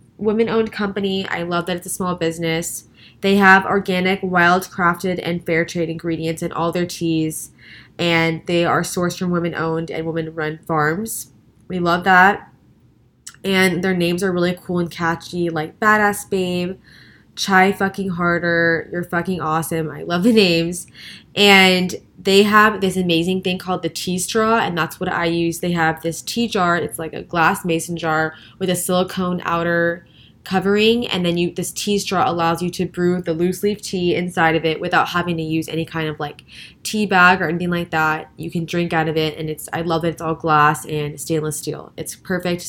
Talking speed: 190 wpm